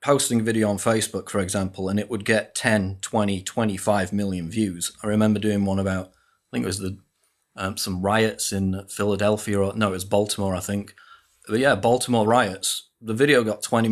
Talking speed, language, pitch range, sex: 200 wpm, English, 100-115 Hz, male